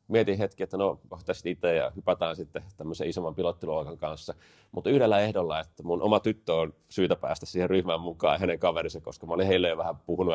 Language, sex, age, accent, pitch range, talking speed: Finnish, male, 30-49, native, 85-100 Hz, 210 wpm